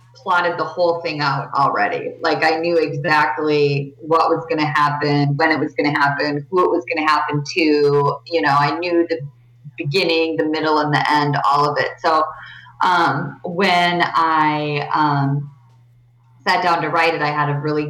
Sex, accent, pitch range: female, American, 140-160 Hz